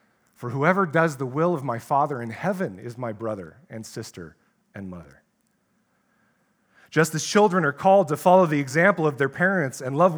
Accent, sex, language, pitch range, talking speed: American, male, English, 145-185 Hz, 185 wpm